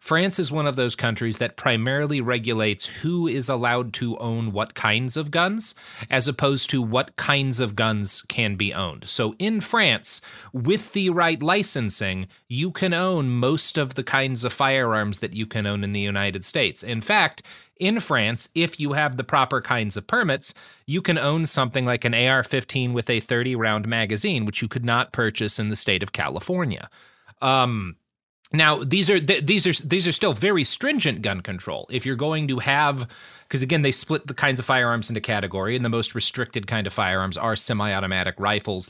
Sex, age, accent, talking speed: male, 30-49, American, 190 wpm